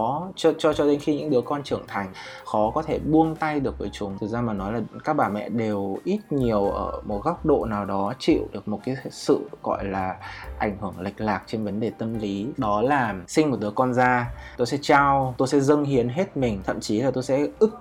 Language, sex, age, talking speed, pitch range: Vietnamese, male, 20-39, 245 wpm, 105-140 Hz